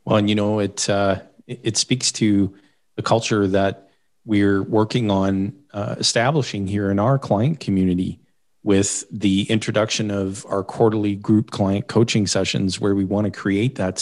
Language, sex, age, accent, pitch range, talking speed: English, male, 40-59, American, 95-105 Hz, 165 wpm